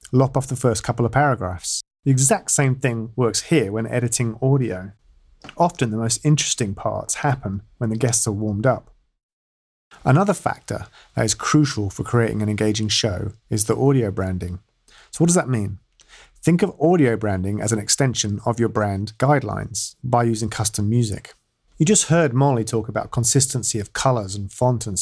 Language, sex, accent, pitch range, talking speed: English, male, British, 105-135 Hz, 175 wpm